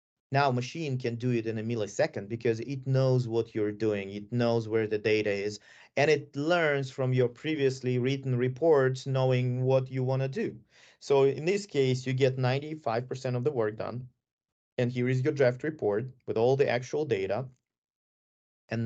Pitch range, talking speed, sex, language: 115-140 Hz, 180 wpm, male, English